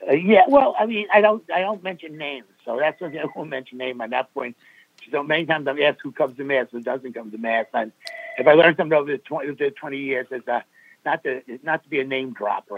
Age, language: 60-79, English